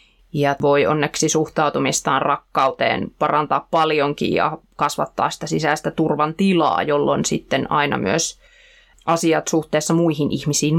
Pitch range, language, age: 145-165 Hz, Finnish, 20-39